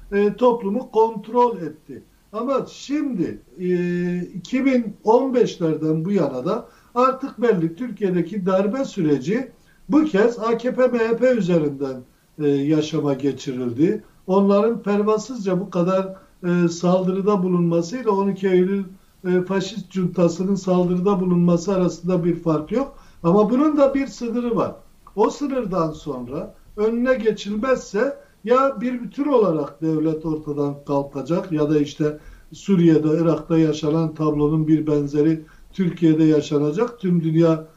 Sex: male